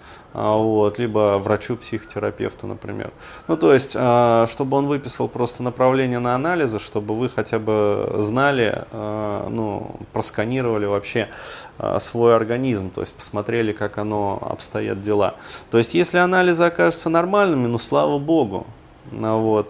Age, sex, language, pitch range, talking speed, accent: 20-39, male, Russian, 105-130 Hz, 120 wpm, native